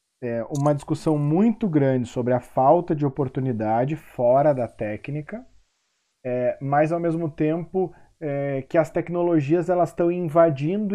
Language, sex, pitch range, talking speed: Portuguese, male, 125-155 Hz, 115 wpm